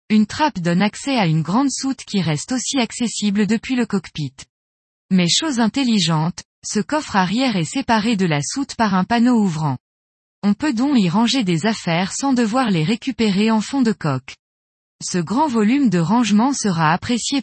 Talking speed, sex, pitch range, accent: 180 wpm, female, 175-245 Hz, French